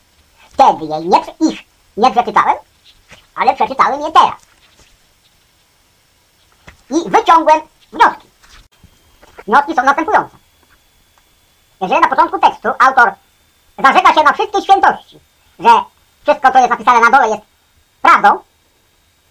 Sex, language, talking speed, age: male, English, 105 wpm, 50-69